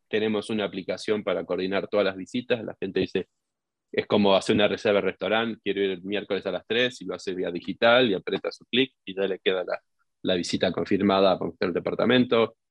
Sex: male